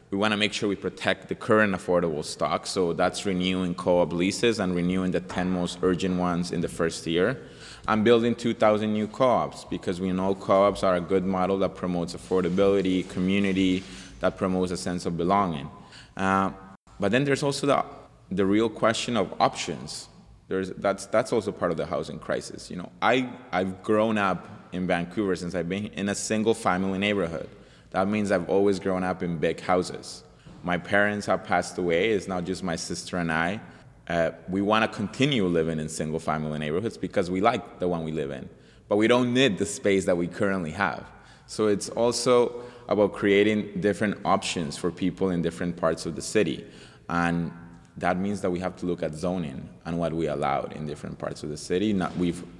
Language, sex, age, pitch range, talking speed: English, male, 20-39, 90-105 Hz, 195 wpm